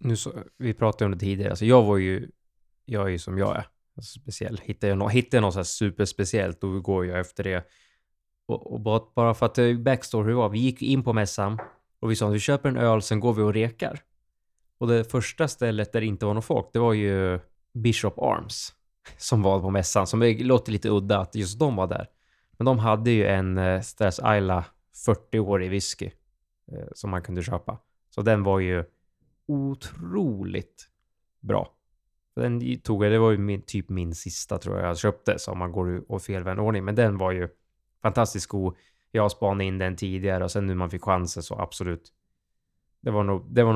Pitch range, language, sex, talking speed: 95-115 Hz, Swedish, male, 205 wpm